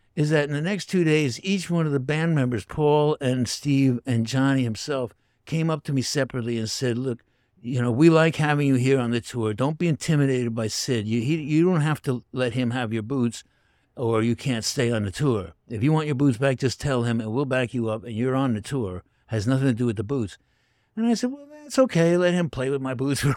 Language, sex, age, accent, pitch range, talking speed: English, male, 60-79, American, 120-160 Hz, 255 wpm